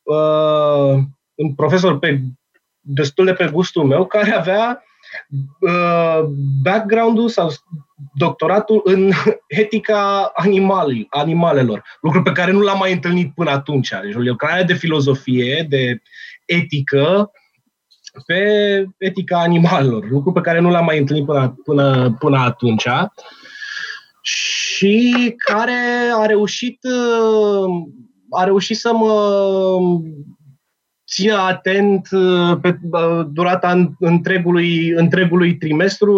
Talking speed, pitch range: 105 wpm, 145-195 Hz